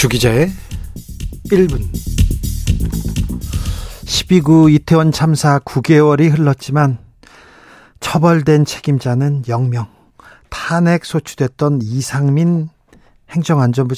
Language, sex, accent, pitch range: Korean, male, native, 135-185 Hz